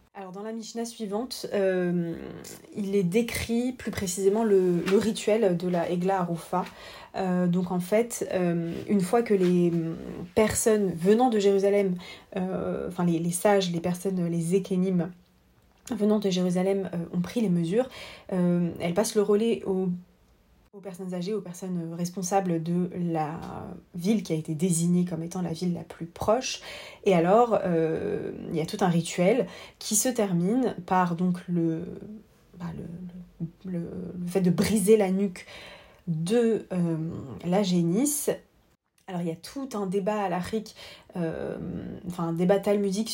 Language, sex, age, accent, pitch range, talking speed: French, female, 30-49, French, 175-200 Hz, 160 wpm